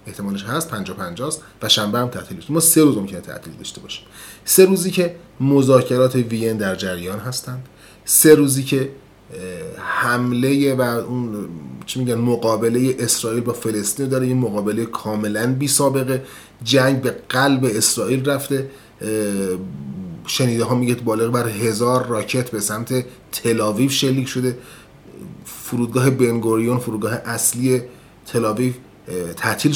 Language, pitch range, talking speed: Persian, 110-140 Hz, 130 wpm